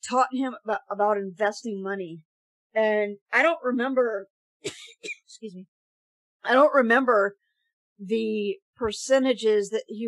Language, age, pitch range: English, 50-69, 215-270 Hz